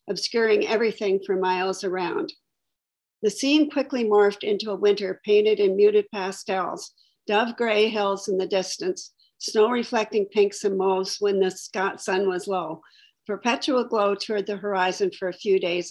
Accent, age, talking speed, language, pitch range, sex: American, 50-69, 155 wpm, English, 190-225 Hz, female